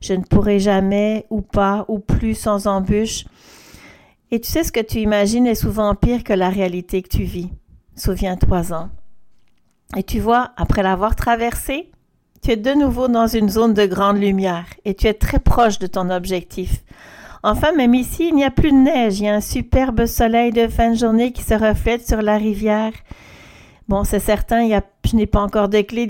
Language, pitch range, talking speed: French, 190-230 Hz, 200 wpm